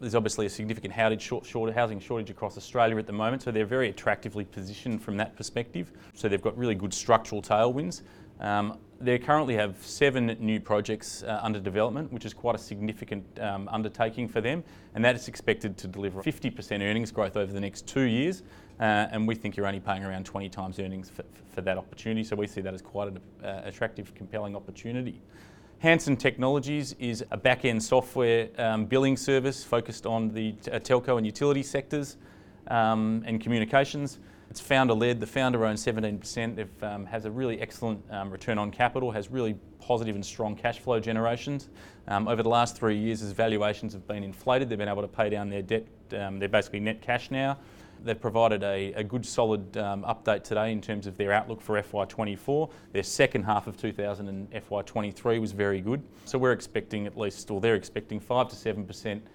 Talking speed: 195 wpm